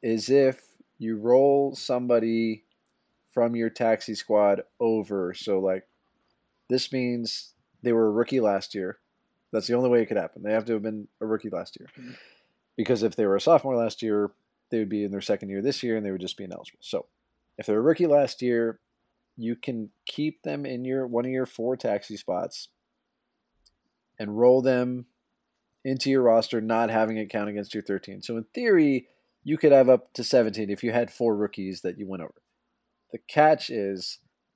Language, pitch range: English, 105-125 Hz